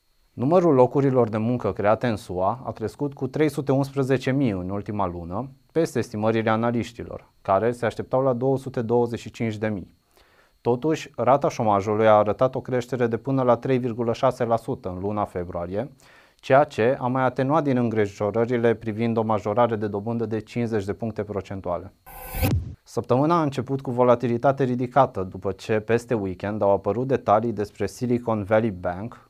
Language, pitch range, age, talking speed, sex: Romanian, 105-130 Hz, 30-49, 145 wpm, male